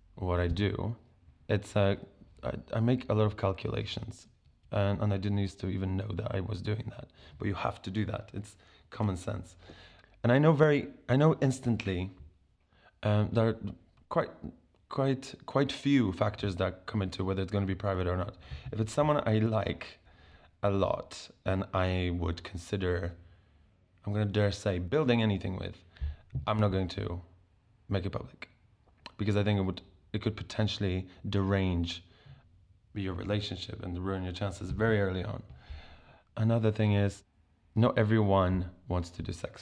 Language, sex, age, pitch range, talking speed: English, male, 20-39, 90-110 Hz, 170 wpm